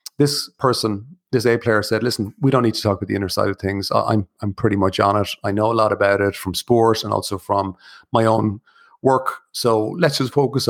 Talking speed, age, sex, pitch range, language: 235 wpm, 30-49, male, 110-145 Hz, English